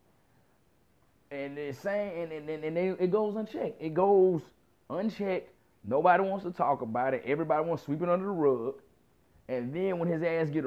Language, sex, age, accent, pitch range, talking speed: English, male, 30-49, American, 135-185 Hz, 210 wpm